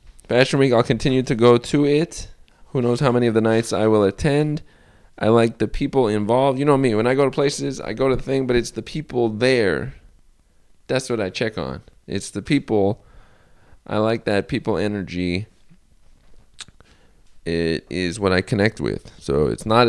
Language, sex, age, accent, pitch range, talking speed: English, male, 20-39, American, 95-135 Hz, 190 wpm